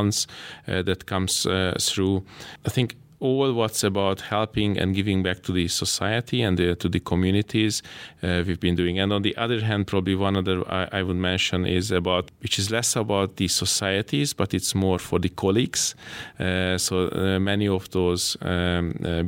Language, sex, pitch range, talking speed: English, male, 90-100 Hz, 185 wpm